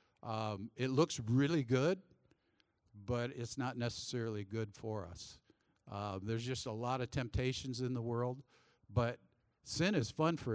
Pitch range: 110-130 Hz